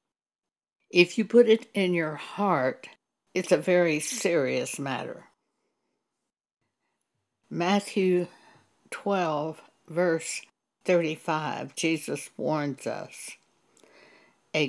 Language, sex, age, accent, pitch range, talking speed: English, female, 60-79, American, 150-190 Hz, 80 wpm